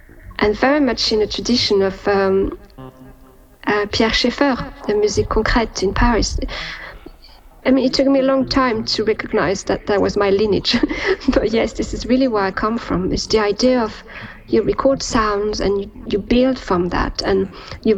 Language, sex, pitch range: Spanish, female, 195-250 Hz